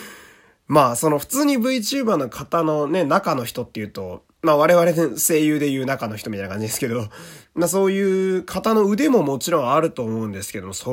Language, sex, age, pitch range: Japanese, male, 20-39, 105-170 Hz